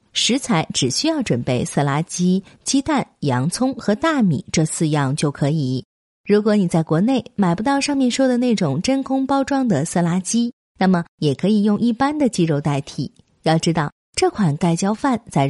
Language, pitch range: Chinese, 155-245 Hz